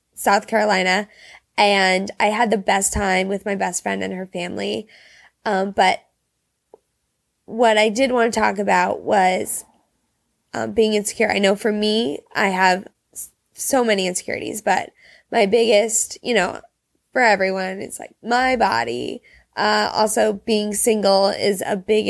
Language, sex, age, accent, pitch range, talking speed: English, female, 10-29, American, 190-225 Hz, 150 wpm